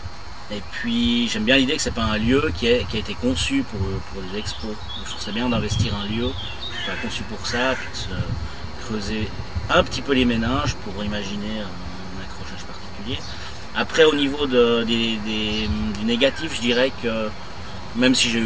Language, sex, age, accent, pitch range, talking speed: French, male, 30-49, French, 95-110 Hz, 190 wpm